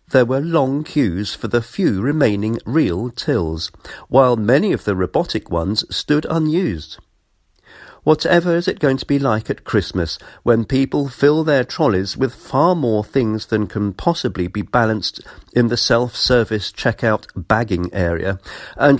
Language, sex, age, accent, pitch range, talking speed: English, male, 50-69, British, 95-140 Hz, 150 wpm